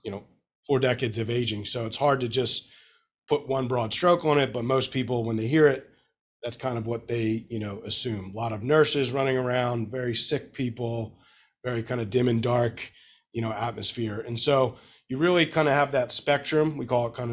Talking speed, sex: 220 wpm, male